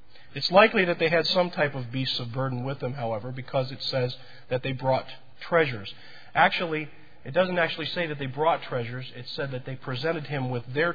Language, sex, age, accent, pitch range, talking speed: English, male, 40-59, American, 120-160 Hz, 210 wpm